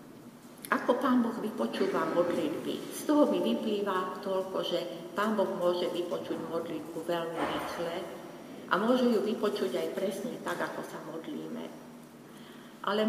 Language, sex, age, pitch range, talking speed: Slovak, female, 50-69, 175-220 Hz, 135 wpm